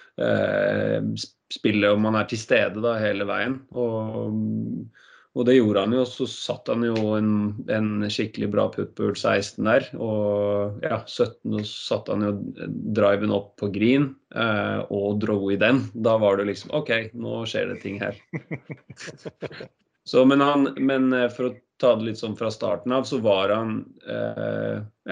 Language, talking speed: English, 170 wpm